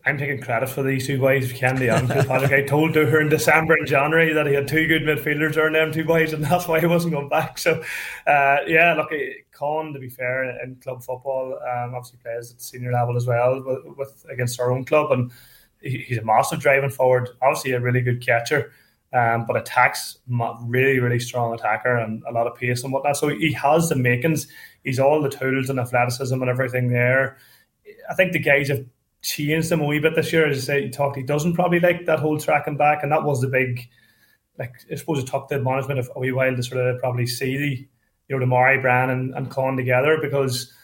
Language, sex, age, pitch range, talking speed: English, male, 20-39, 125-150 Hz, 225 wpm